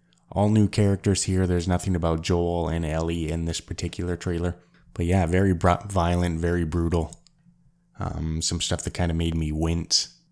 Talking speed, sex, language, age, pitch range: 175 wpm, male, English, 20-39, 80-95 Hz